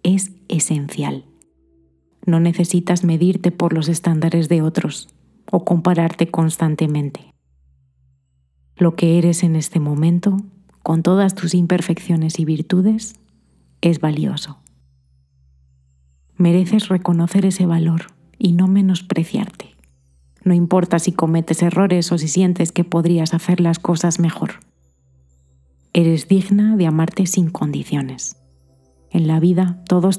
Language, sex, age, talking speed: Spanish, female, 30-49, 115 wpm